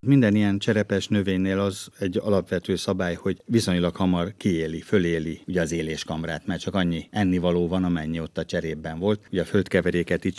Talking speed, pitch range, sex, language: 175 wpm, 85-100 Hz, male, Hungarian